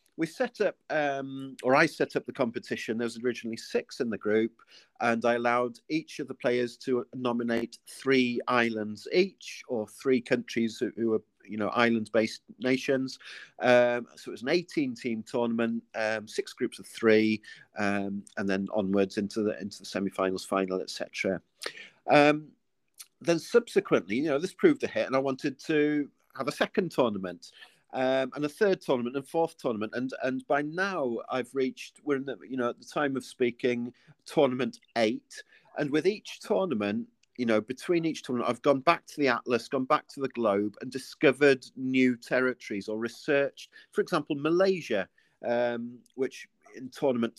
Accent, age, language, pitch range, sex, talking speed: British, 40-59, English, 115-150 Hz, male, 175 wpm